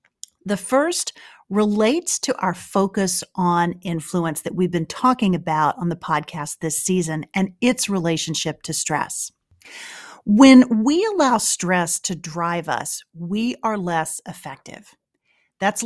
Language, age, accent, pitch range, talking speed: English, 40-59, American, 180-265 Hz, 130 wpm